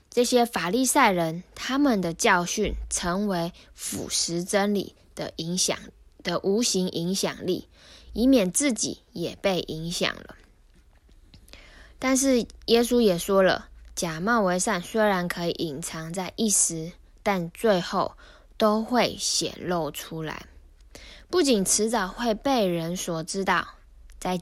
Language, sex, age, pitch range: Chinese, female, 10-29, 170-225 Hz